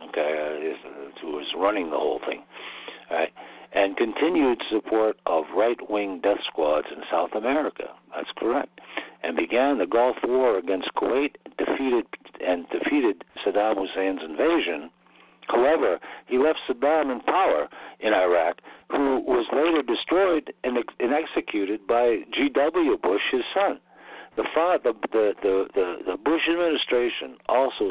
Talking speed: 135 wpm